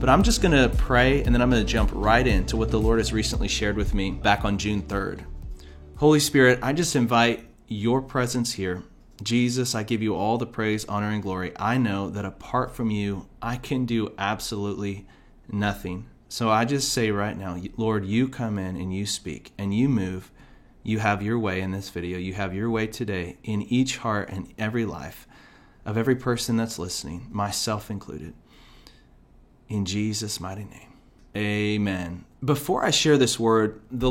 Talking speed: 185 wpm